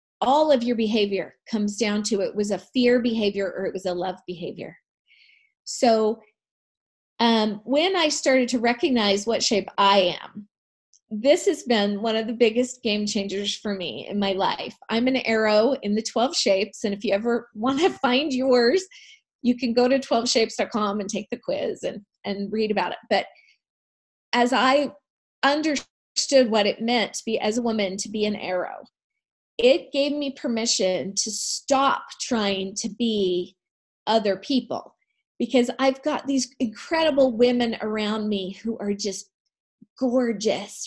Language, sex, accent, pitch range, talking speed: English, female, American, 205-260 Hz, 165 wpm